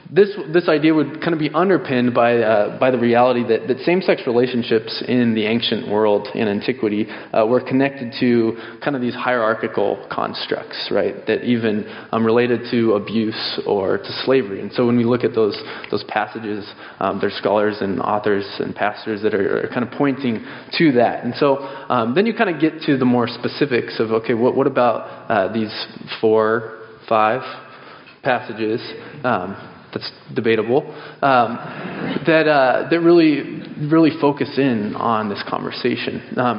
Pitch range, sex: 110-135 Hz, male